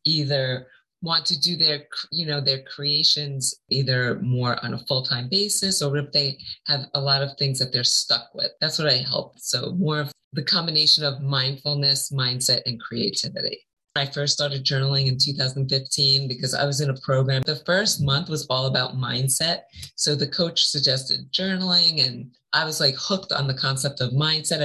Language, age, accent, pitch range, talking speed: English, 30-49, American, 135-170 Hz, 185 wpm